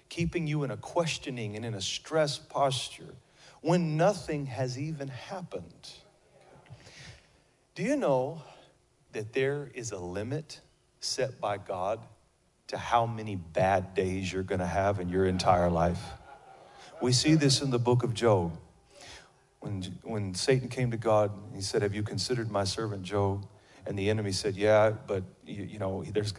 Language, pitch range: English, 110-140 Hz